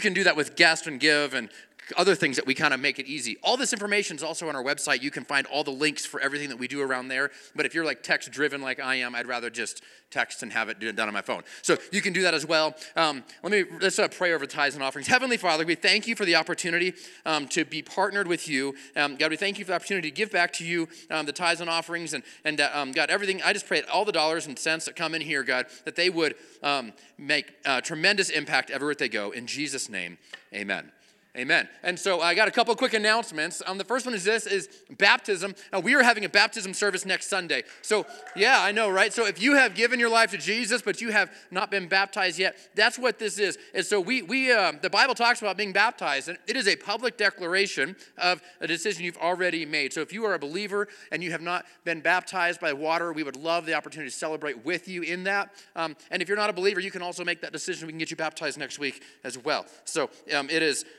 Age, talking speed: 30-49, 265 wpm